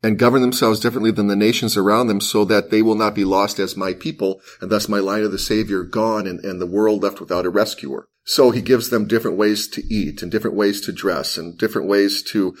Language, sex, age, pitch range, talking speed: English, male, 30-49, 100-115 Hz, 250 wpm